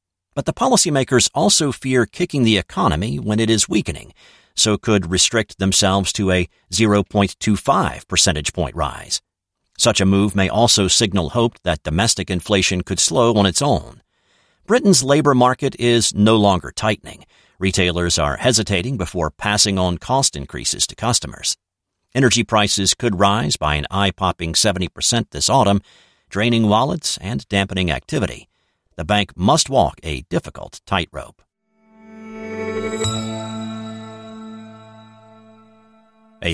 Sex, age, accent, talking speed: male, 50-69, American, 125 wpm